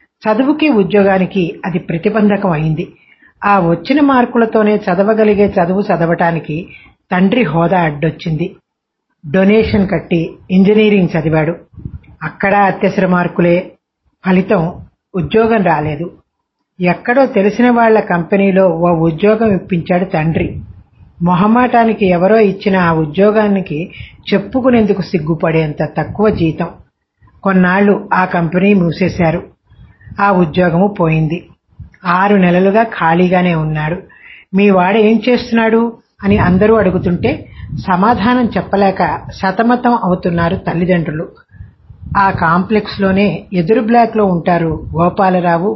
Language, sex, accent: English, female, Indian